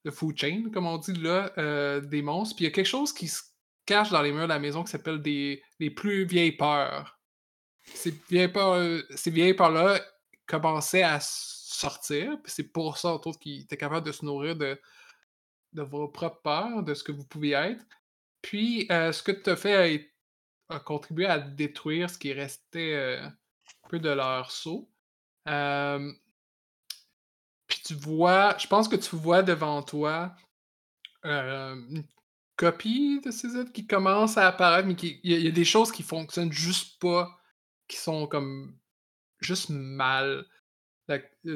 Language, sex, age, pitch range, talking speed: French, male, 20-39, 145-180 Hz, 180 wpm